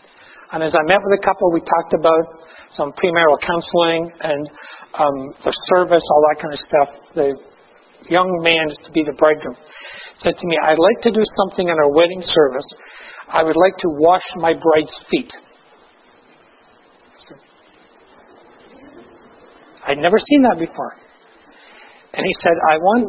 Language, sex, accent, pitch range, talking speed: English, male, American, 155-195 Hz, 155 wpm